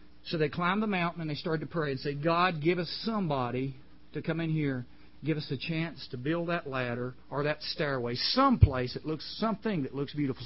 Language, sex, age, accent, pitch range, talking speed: English, male, 50-69, American, 100-160 Hz, 220 wpm